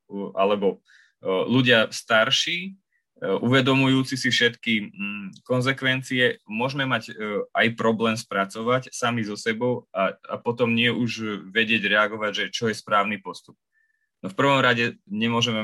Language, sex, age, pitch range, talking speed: Slovak, male, 20-39, 100-125 Hz, 125 wpm